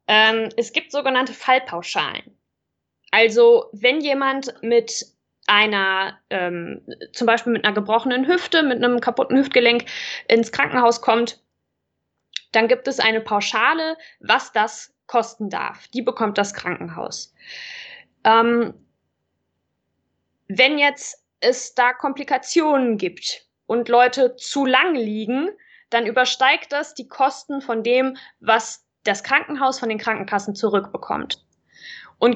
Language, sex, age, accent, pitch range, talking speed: German, female, 20-39, German, 225-275 Hz, 120 wpm